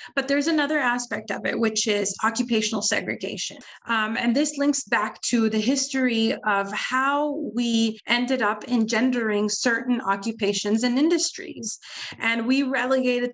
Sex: female